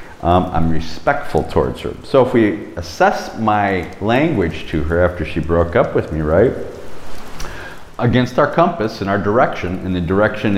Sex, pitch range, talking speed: male, 80-110 Hz, 165 wpm